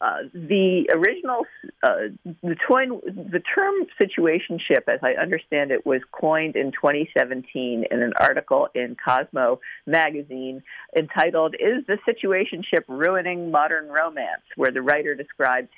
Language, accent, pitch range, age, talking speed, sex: English, American, 130-185 Hz, 50-69, 120 wpm, female